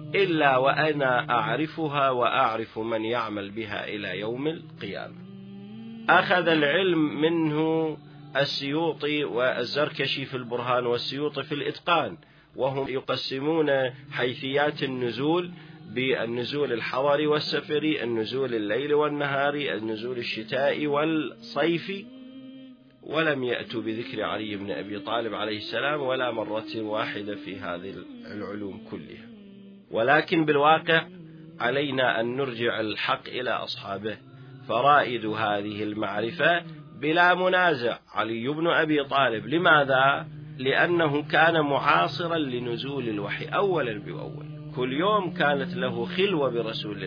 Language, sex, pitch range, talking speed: Arabic, male, 125-160 Hz, 100 wpm